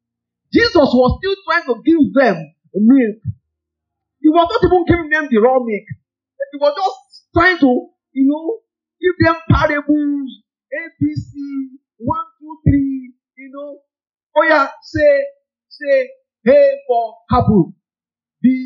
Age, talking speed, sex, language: 40-59, 140 wpm, male, English